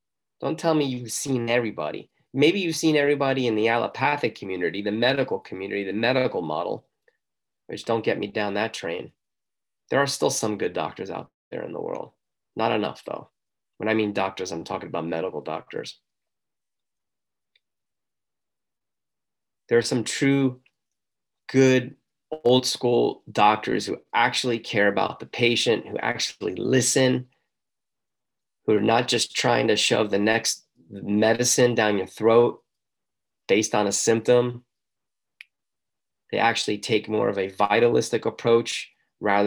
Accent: American